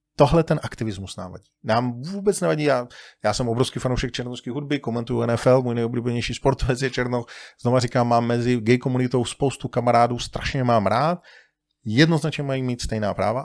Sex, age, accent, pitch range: male, 40-59, native, 120-150 Hz